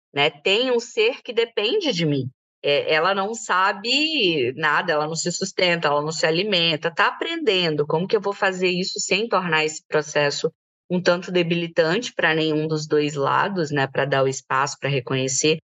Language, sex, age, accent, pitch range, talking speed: Portuguese, female, 20-39, Brazilian, 160-215 Hz, 180 wpm